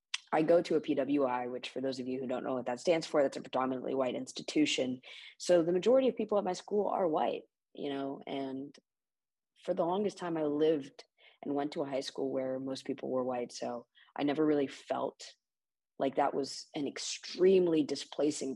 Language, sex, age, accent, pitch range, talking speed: English, female, 20-39, American, 130-155 Hz, 205 wpm